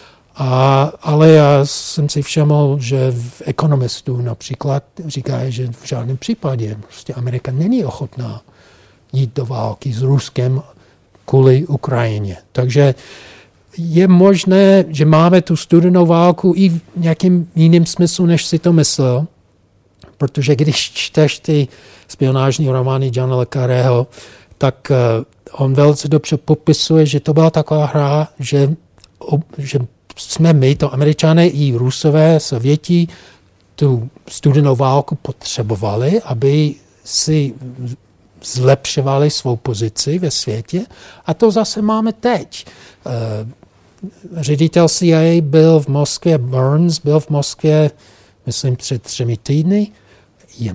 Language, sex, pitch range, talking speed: Czech, male, 125-160 Hz, 120 wpm